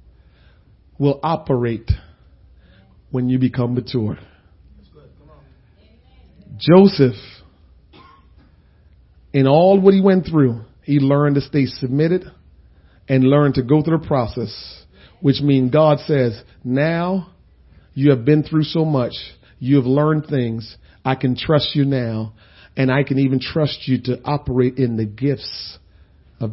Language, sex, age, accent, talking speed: English, male, 40-59, American, 130 wpm